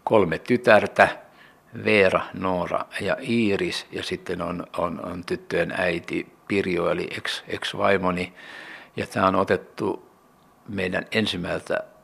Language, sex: Finnish, male